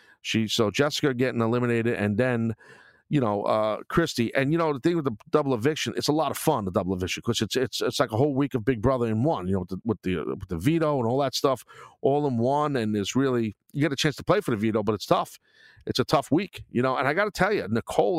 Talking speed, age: 280 wpm, 50-69